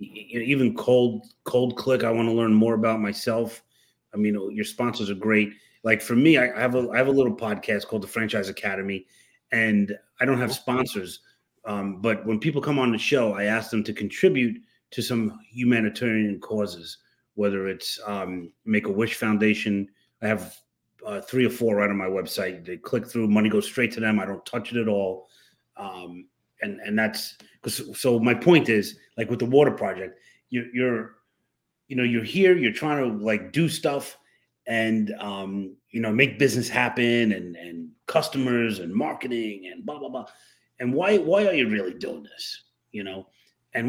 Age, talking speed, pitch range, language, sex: 30-49, 190 wpm, 105-125 Hz, English, male